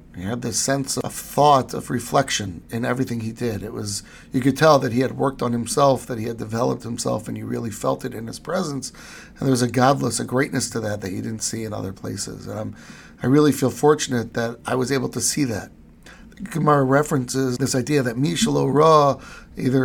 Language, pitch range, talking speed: English, 115-135 Hz, 220 wpm